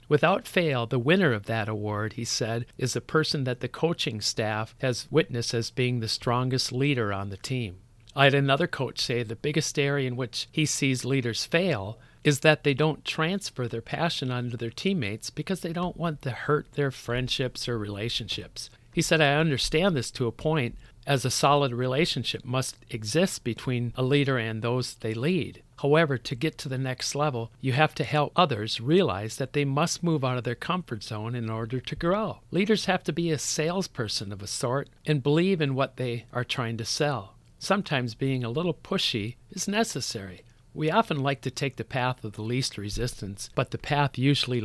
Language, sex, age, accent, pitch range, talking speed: English, male, 50-69, American, 115-150 Hz, 200 wpm